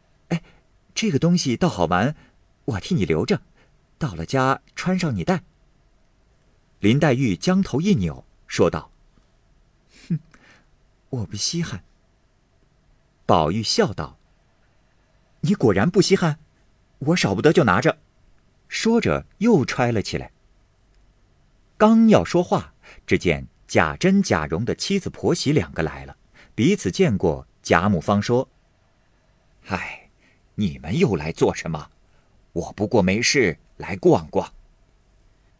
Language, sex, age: Chinese, male, 50-69